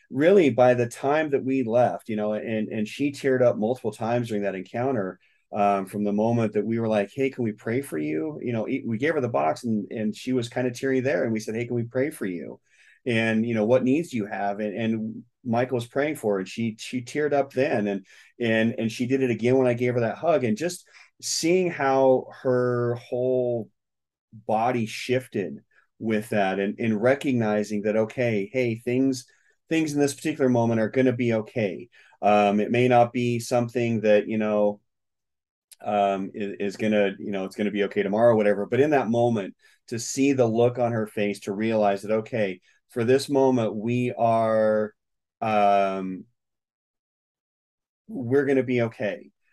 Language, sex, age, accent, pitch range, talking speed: English, male, 30-49, American, 105-125 Hz, 200 wpm